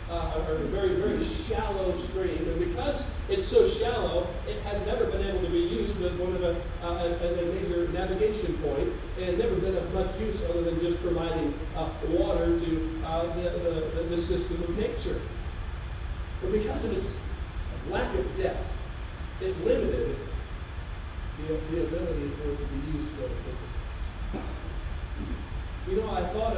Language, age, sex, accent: English, 40-59, male, American